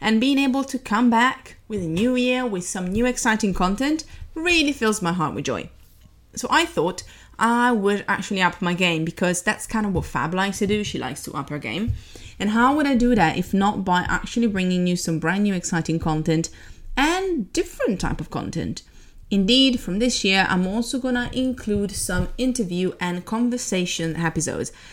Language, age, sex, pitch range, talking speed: English, 30-49, female, 165-225 Hz, 195 wpm